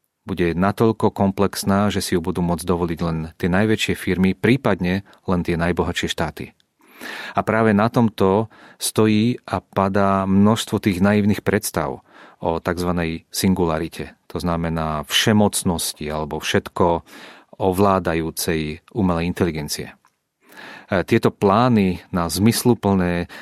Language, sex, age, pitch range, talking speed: Czech, male, 40-59, 85-105 Hz, 115 wpm